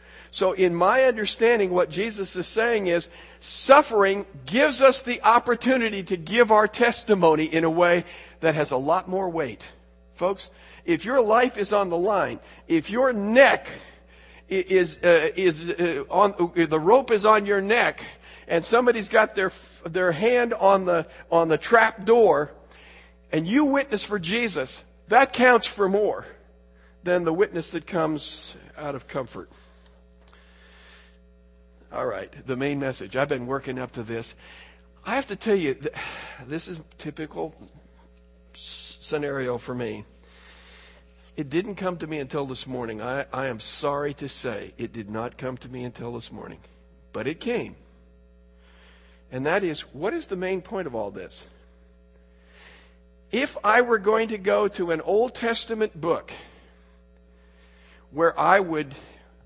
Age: 50-69